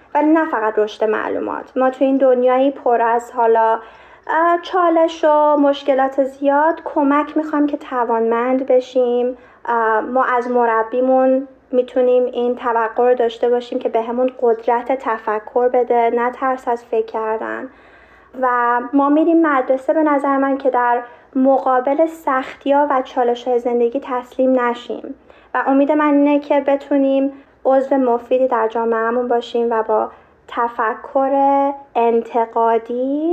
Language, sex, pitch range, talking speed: Persian, female, 235-285 Hz, 130 wpm